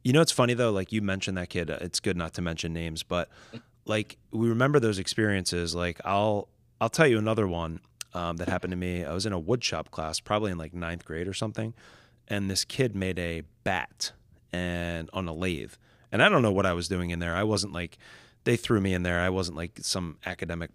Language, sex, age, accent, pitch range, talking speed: English, male, 30-49, American, 85-110 Hz, 230 wpm